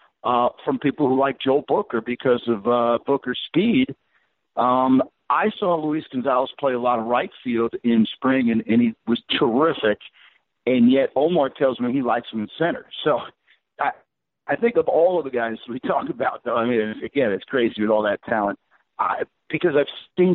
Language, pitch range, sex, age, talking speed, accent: English, 120-160 Hz, male, 60-79, 195 wpm, American